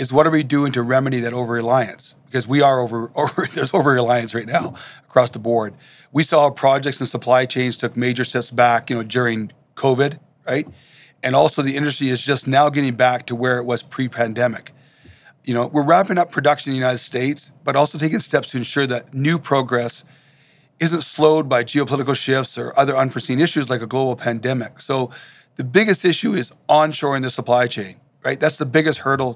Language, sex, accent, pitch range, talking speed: English, male, American, 125-155 Hz, 195 wpm